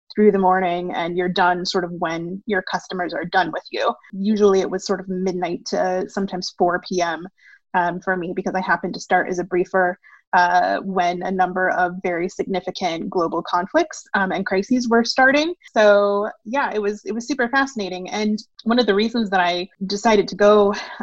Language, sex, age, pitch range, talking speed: English, female, 20-39, 185-220 Hz, 190 wpm